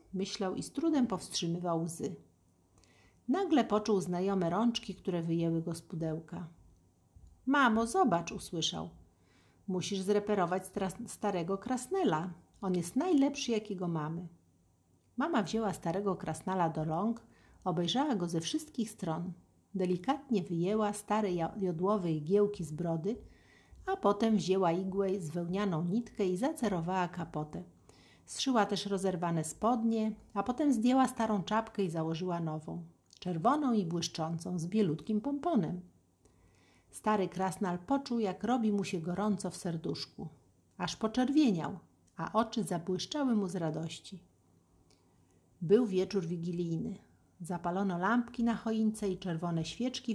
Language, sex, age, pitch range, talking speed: Polish, female, 50-69, 165-215 Hz, 120 wpm